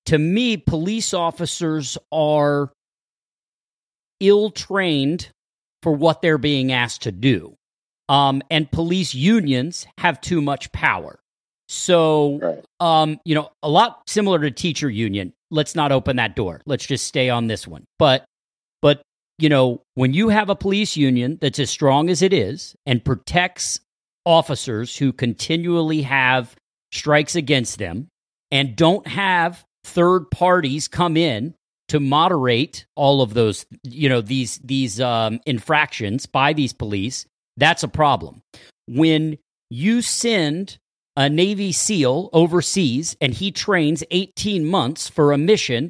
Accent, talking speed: American, 140 wpm